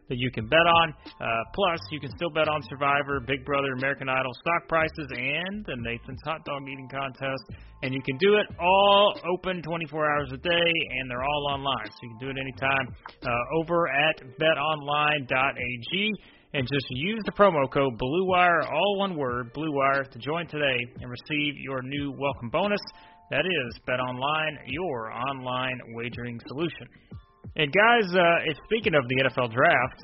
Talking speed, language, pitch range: 175 wpm, English, 130-160 Hz